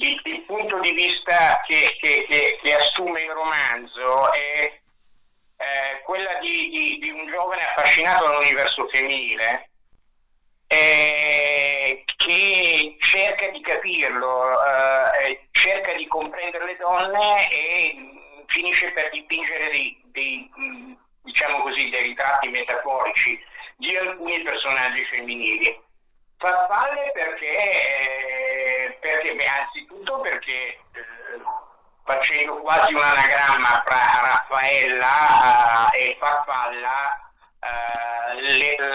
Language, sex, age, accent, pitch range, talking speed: Italian, male, 50-69, native, 125-180 Hz, 100 wpm